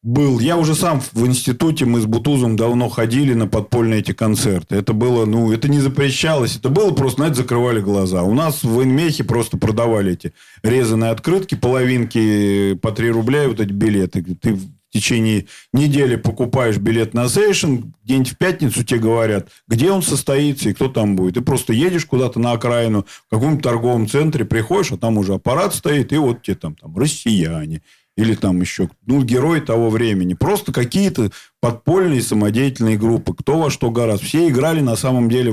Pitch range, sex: 110-140 Hz, male